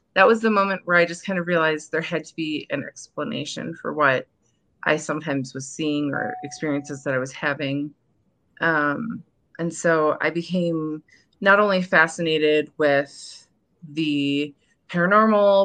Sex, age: female, 30-49